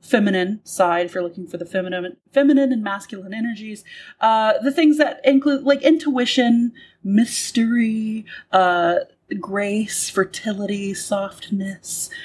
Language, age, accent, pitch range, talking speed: English, 30-49, American, 200-290 Hz, 120 wpm